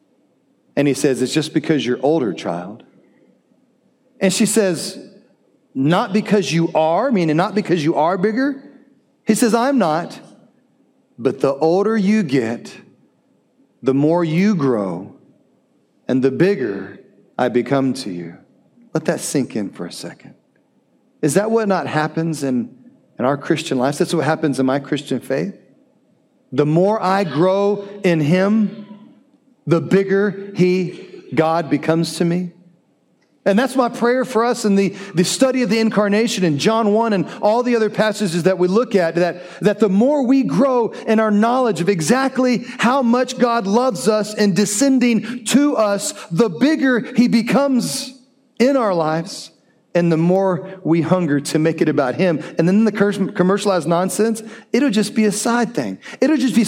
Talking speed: 165 wpm